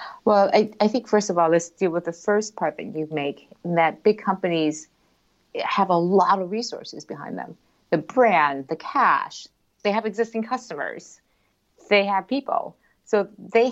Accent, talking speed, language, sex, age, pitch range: American, 170 wpm, English, female, 50-69, 155-205 Hz